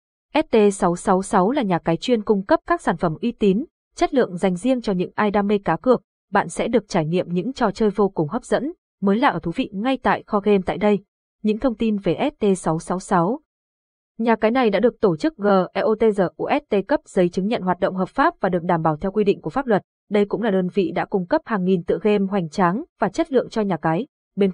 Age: 20-39